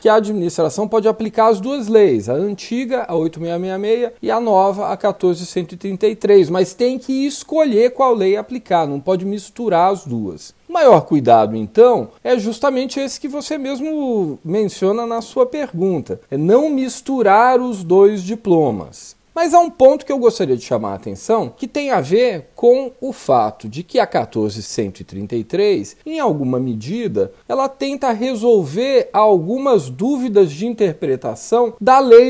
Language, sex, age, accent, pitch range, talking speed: Portuguese, male, 40-59, Brazilian, 180-260 Hz, 155 wpm